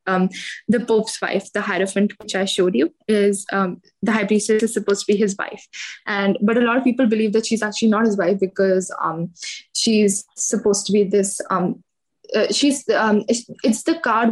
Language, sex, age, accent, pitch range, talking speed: English, female, 10-29, Indian, 200-235 Hz, 205 wpm